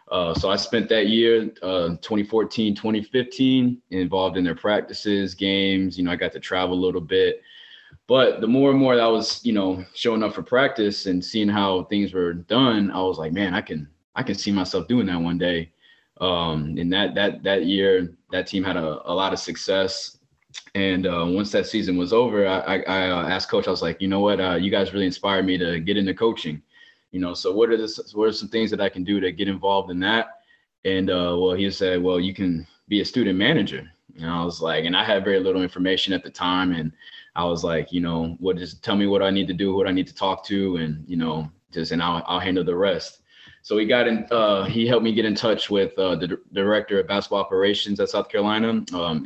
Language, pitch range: English, 90-105 Hz